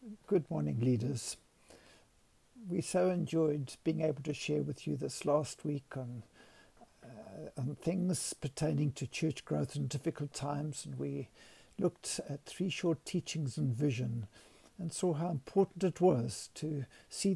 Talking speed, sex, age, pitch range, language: 150 wpm, male, 60-79, 135-185 Hz, English